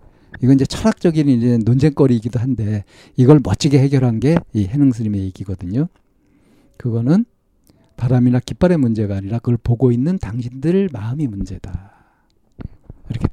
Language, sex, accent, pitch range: Korean, male, native, 110-150 Hz